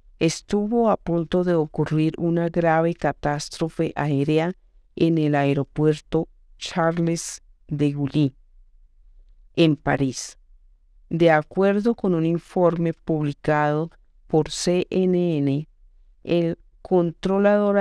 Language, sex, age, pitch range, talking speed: Spanish, female, 50-69, 145-175 Hz, 90 wpm